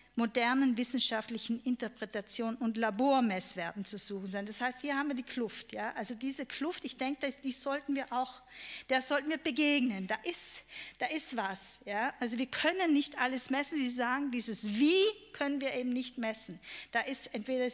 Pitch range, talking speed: 230-285 Hz, 185 wpm